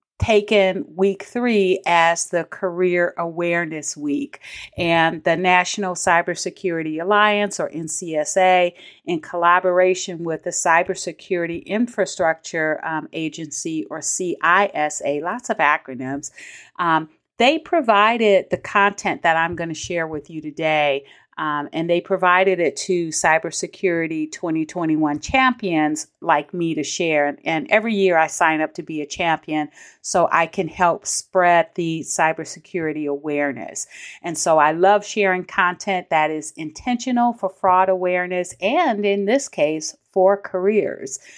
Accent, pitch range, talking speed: American, 160-205 Hz, 130 wpm